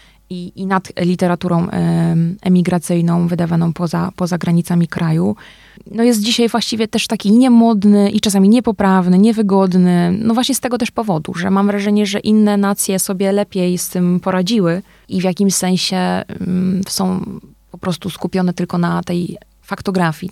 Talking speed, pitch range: 155 wpm, 180-195 Hz